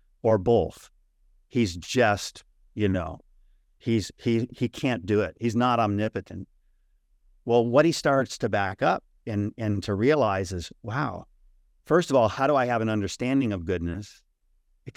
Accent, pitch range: American, 95-135 Hz